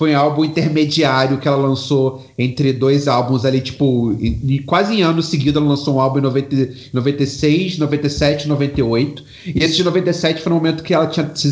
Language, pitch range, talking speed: Portuguese, 130-160 Hz, 200 wpm